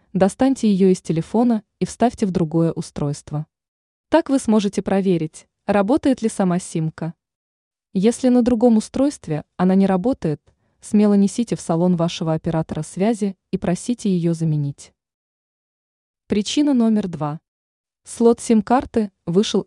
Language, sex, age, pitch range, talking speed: Russian, female, 20-39, 170-230 Hz, 125 wpm